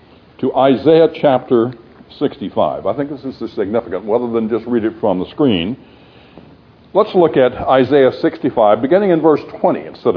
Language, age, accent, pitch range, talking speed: English, 60-79, American, 115-160 Hz, 160 wpm